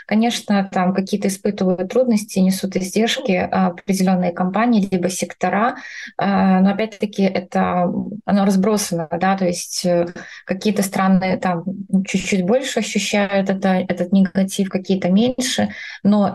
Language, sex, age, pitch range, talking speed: Russian, female, 20-39, 180-205 Hz, 115 wpm